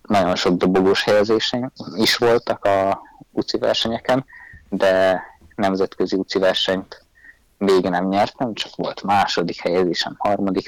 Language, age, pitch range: Hungarian, 20-39, 95-105 Hz